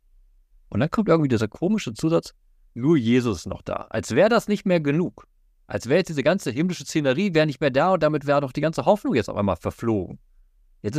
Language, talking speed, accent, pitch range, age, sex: German, 220 wpm, German, 90-150 Hz, 50-69, male